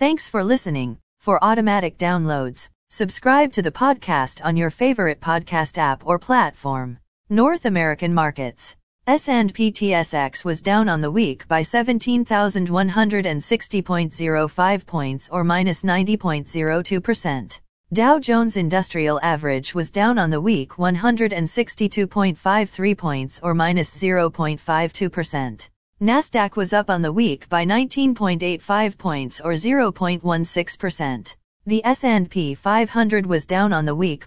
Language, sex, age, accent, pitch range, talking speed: English, female, 40-59, American, 160-215 Hz, 115 wpm